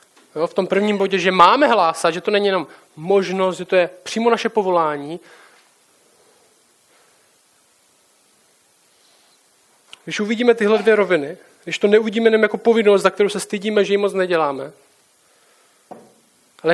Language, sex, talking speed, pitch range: Czech, male, 140 wpm, 165-200 Hz